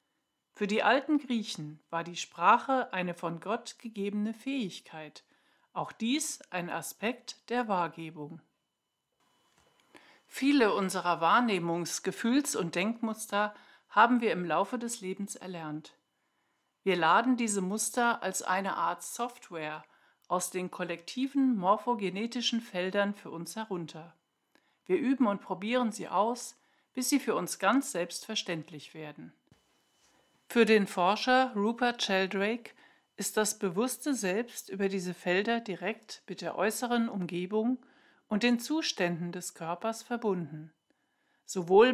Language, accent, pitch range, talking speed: German, German, 175-240 Hz, 120 wpm